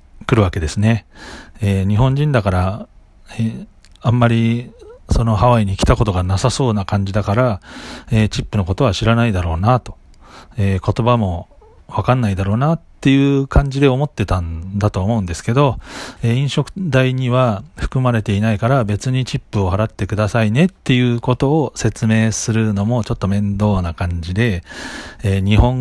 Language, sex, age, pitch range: Japanese, male, 40-59, 100-130 Hz